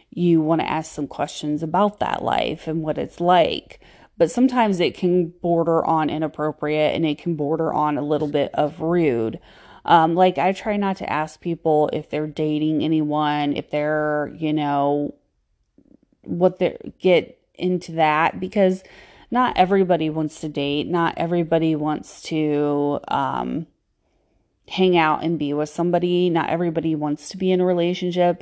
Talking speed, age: 160 wpm, 30-49